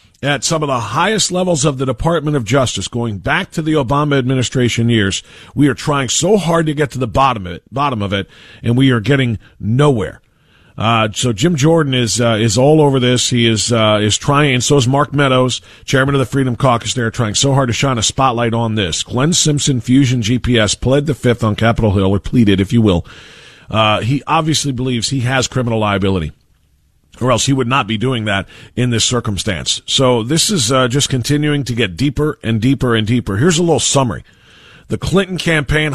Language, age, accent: English, 40-59, American